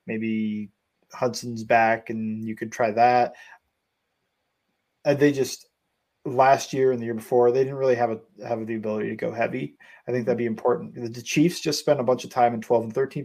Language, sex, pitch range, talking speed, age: English, male, 115-135 Hz, 200 wpm, 20-39